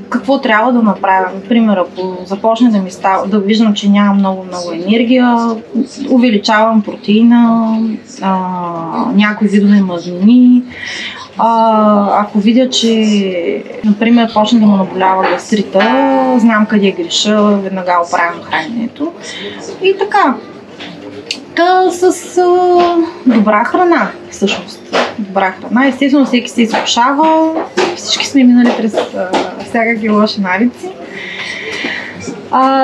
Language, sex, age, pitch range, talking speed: Bulgarian, female, 20-39, 205-260 Hz, 110 wpm